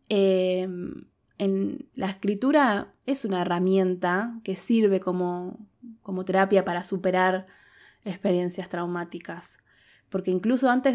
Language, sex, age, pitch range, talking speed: Spanish, female, 20-39, 185-215 Hz, 100 wpm